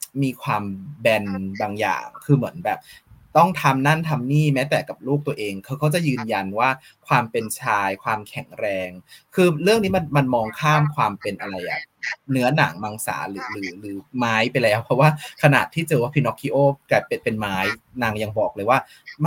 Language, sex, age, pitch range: Thai, male, 20-39, 110-160 Hz